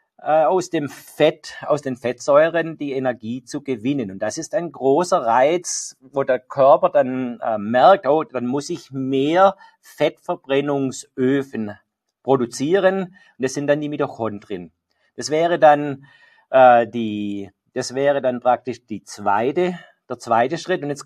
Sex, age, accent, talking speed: male, 50-69, German, 145 wpm